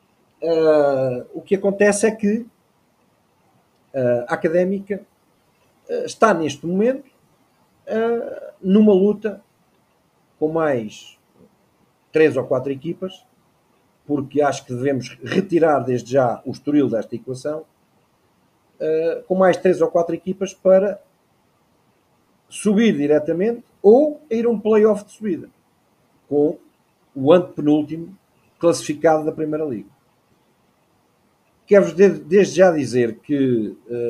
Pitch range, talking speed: 140-195 Hz, 100 wpm